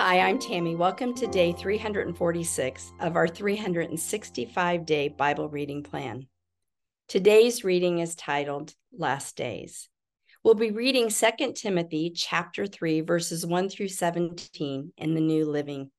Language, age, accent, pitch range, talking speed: English, 50-69, American, 160-195 Hz, 120 wpm